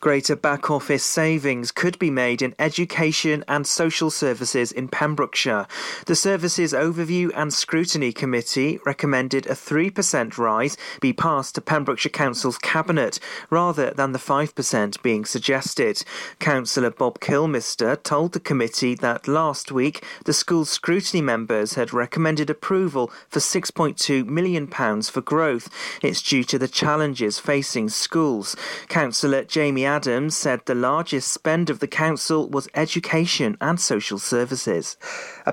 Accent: British